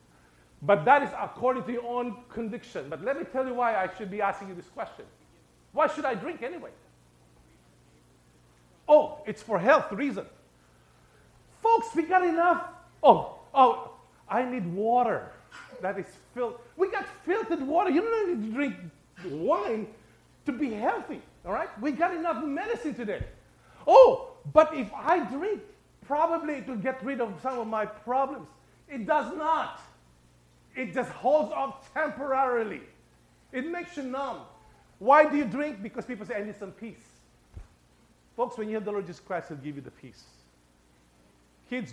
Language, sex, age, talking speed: English, male, 50-69, 165 wpm